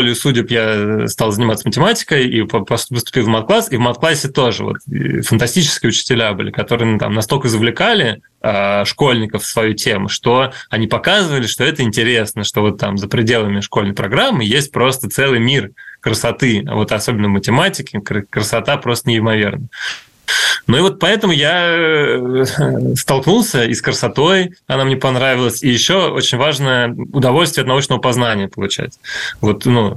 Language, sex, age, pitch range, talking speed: Russian, male, 20-39, 110-135 Hz, 150 wpm